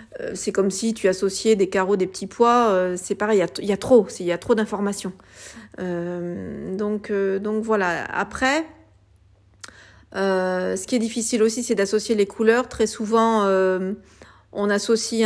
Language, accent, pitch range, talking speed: French, French, 190-220 Hz, 155 wpm